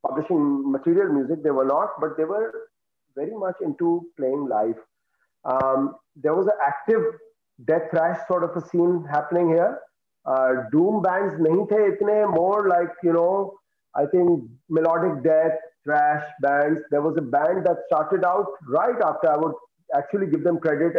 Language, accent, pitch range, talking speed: English, Indian, 140-180 Hz, 165 wpm